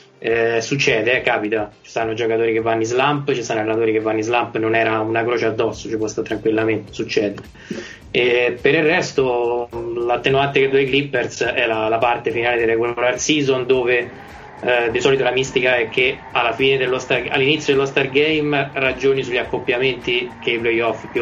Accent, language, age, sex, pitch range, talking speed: native, Italian, 20-39, male, 115-135 Hz, 190 wpm